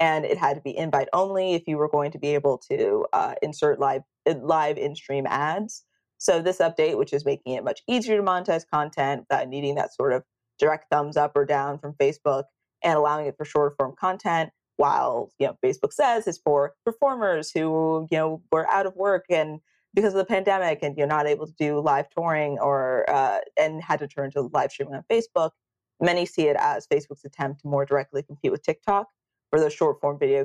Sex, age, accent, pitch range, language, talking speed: female, 20-39, American, 145-185 Hz, English, 210 wpm